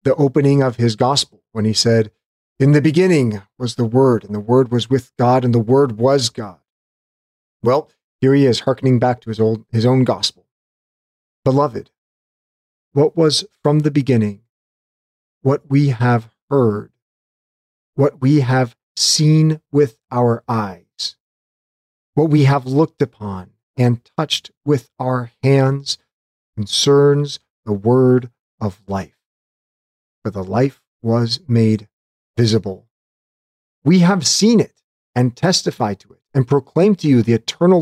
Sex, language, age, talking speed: male, English, 40-59, 140 wpm